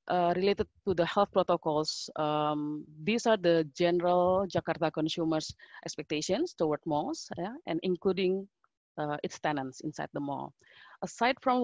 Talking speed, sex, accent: 135 wpm, female, Indonesian